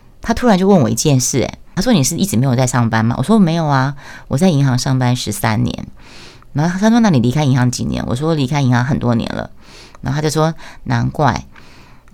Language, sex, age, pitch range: Chinese, female, 30-49, 125-190 Hz